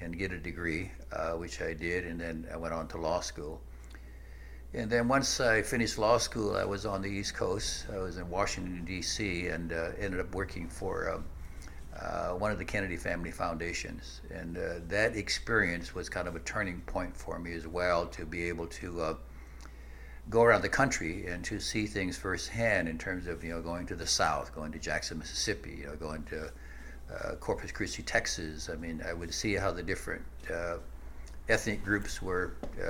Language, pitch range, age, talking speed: English, 75-95 Hz, 60-79, 200 wpm